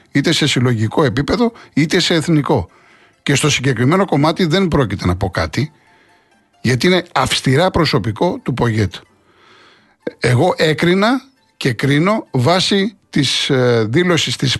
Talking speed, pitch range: 125 wpm, 115-160 Hz